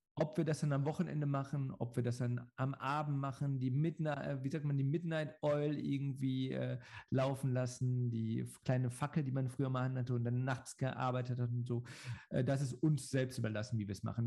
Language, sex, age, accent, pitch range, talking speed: German, male, 50-69, German, 120-150 Hz, 200 wpm